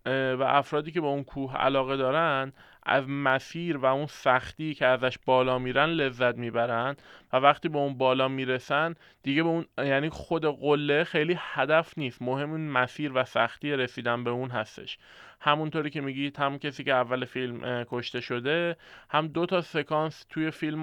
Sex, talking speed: male, 170 wpm